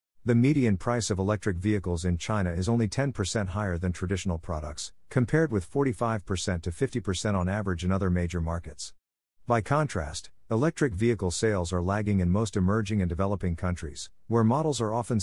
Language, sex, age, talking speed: English, male, 50-69, 170 wpm